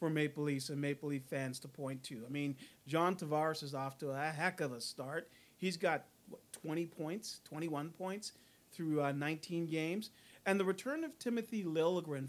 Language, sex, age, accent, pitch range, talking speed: English, male, 40-59, American, 145-185 Hz, 190 wpm